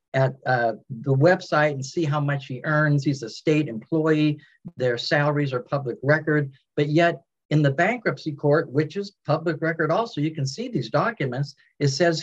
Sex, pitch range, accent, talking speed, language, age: male, 135-170 Hz, American, 180 wpm, English, 50-69